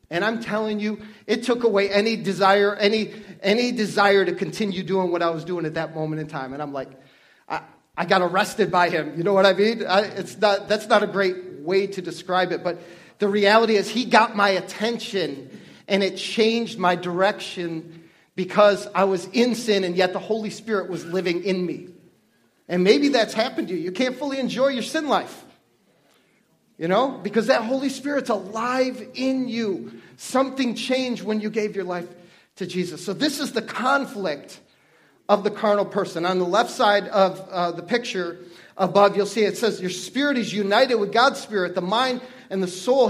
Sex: male